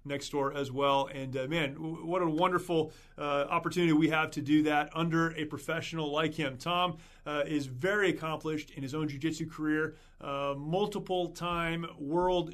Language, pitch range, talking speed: English, 150-175 Hz, 175 wpm